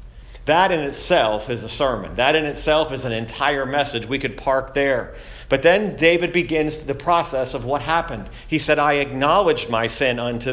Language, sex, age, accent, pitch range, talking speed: English, male, 40-59, American, 115-140 Hz, 190 wpm